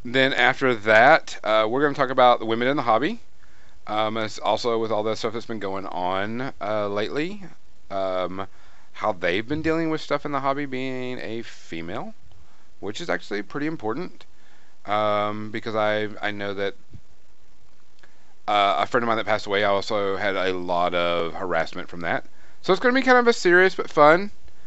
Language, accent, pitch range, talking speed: English, American, 95-145 Hz, 190 wpm